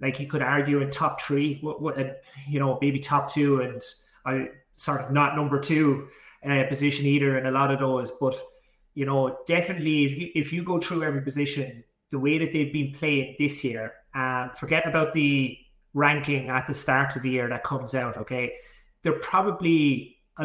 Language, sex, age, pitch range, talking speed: English, male, 30-49, 135-150 Hz, 195 wpm